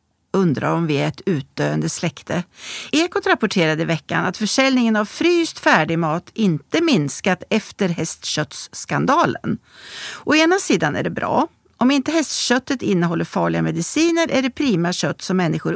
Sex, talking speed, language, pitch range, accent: female, 140 wpm, Swedish, 165-250 Hz, native